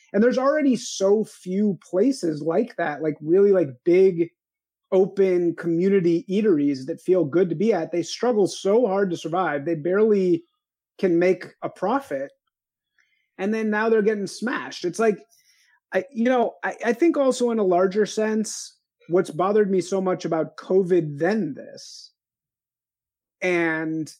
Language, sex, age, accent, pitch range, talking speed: English, male, 30-49, American, 165-225 Hz, 150 wpm